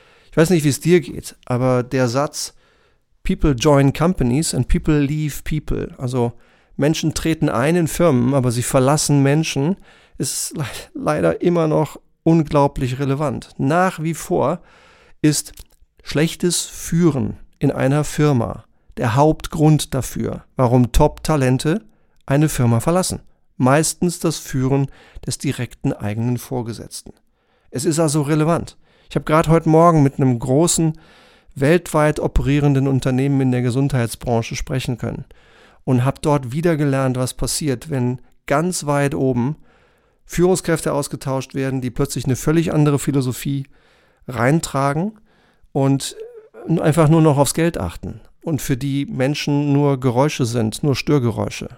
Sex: male